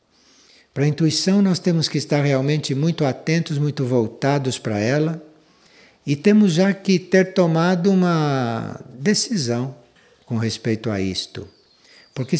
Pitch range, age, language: 115-170 Hz, 60-79, Portuguese